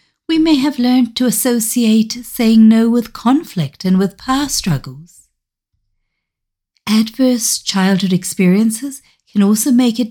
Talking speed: 125 wpm